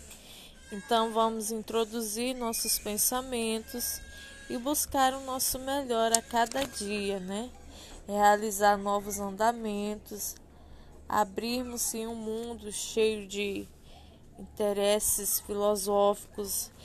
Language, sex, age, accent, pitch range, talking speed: Portuguese, female, 20-39, Brazilian, 200-240 Hz, 90 wpm